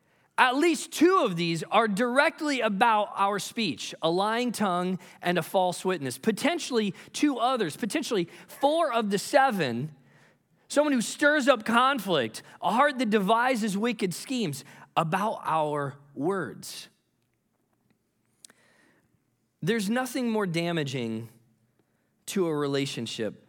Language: English